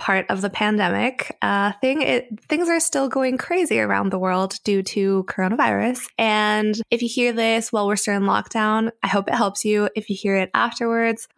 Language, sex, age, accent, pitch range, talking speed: English, female, 20-39, American, 195-235 Hz, 205 wpm